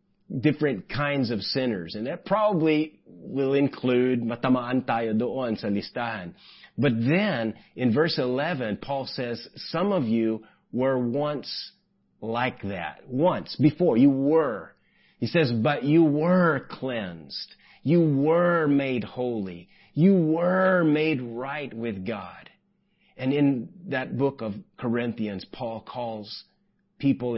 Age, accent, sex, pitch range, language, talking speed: 30-49, American, male, 115-150 Hz, English, 125 wpm